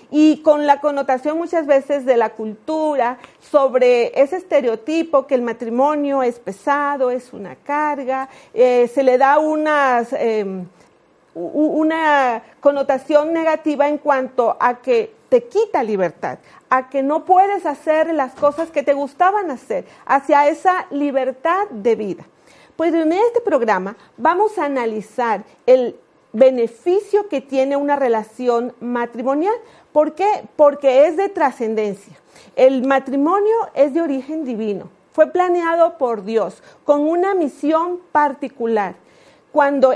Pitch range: 240-310 Hz